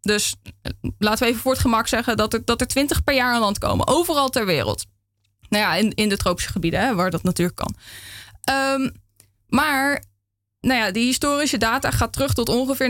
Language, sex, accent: Dutch, female, Dutch